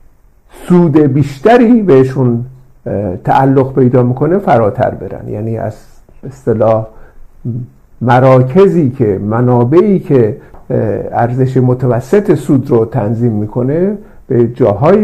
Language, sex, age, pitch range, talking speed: Persian, male, 50-69, 120-175 Hz, 90 wpm